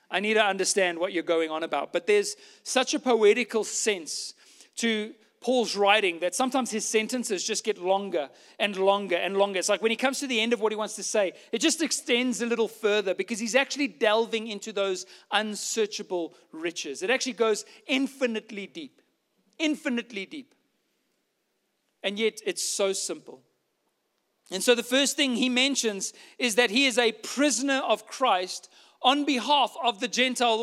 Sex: male